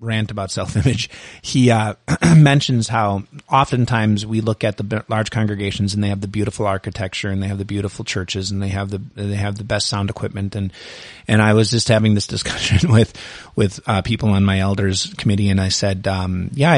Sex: male